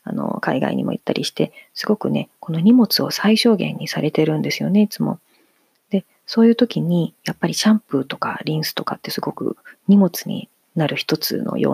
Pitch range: 155-215 Hz